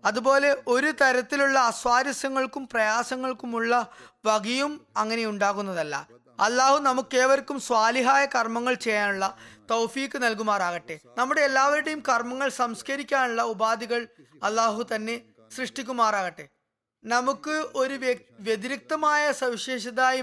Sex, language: female, Malayalam